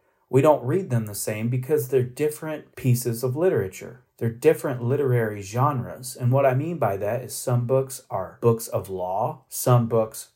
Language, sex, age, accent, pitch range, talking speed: English, male, 40-59, American, 115-135 Hz, 180 wpm